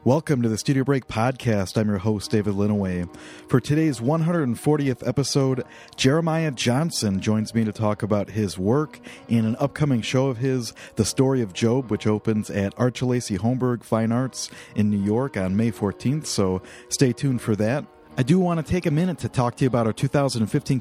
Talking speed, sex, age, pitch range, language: 190 wpm, male, 40-59, 110-140 Hz, English